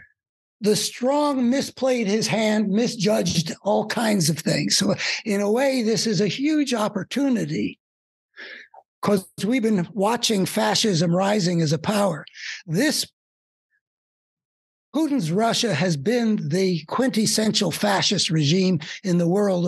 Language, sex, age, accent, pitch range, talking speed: English, male, 60-79, American, 170-220 Hz, 120 wpm